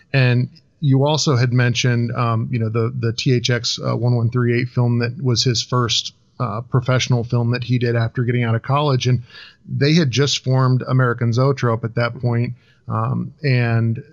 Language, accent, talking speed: English, American, 175 wpm